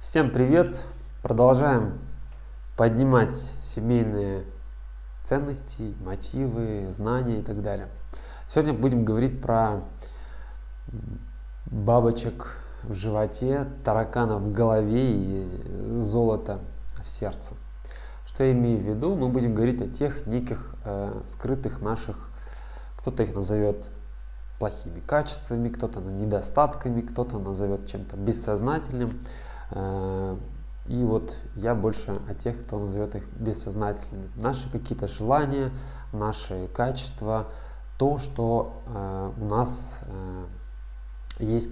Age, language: 20-39, Russian